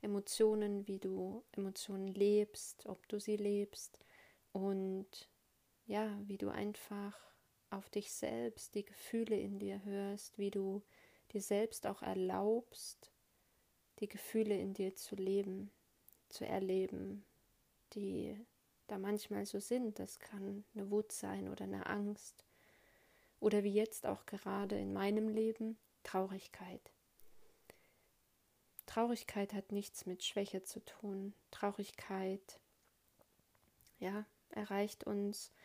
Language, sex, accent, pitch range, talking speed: German, female, German, 195-210 Hz, 115 wpm